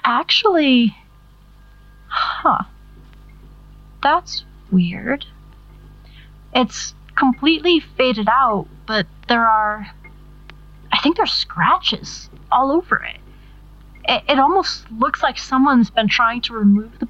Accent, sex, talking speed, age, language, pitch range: American, female, 100 wpm, 30-49, English, 180-260 Hz